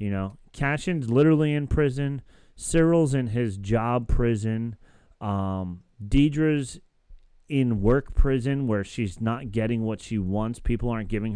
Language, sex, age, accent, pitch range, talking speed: English, male, 30-49, American, 100-130 Hz, 135 wpm